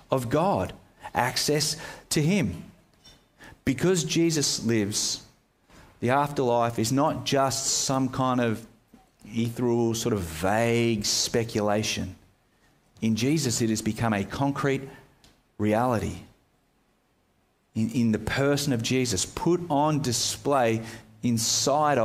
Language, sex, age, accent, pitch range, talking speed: English, male, 40-59, Australian, 110-145 Hz, 105 wpm